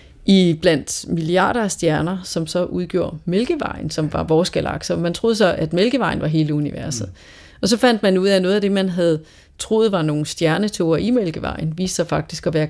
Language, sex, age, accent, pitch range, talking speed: Danish, female, 30-49, native, 165-210 Hz, 200 wpm